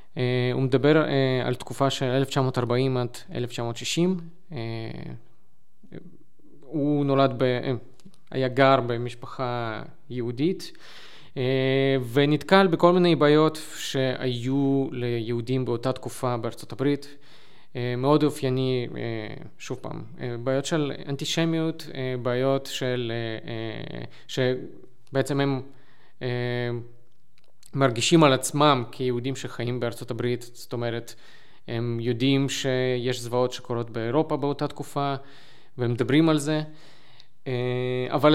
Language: Hebrew